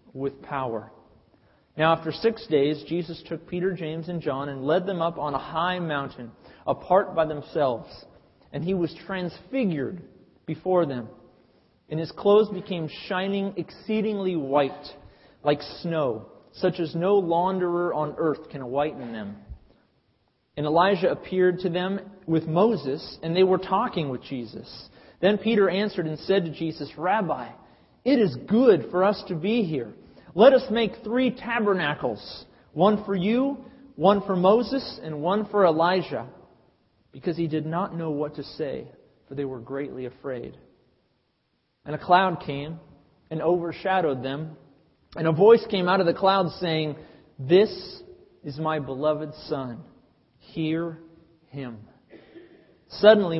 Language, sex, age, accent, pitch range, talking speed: English, male, 40-59, American, 150-195 Hz, 145 wpm